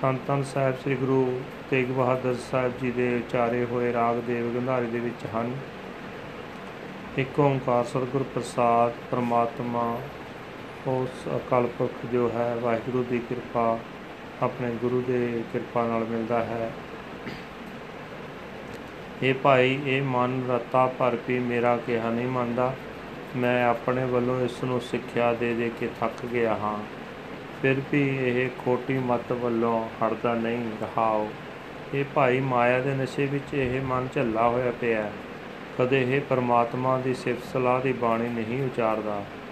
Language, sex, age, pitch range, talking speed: Punjabi, male, 30-49, 120-130 Hz, 135 wpm